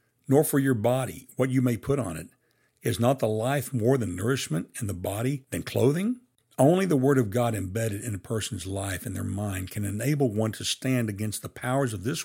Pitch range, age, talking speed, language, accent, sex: 105-135 Hz, 60-79, 220 wpm, English, American, male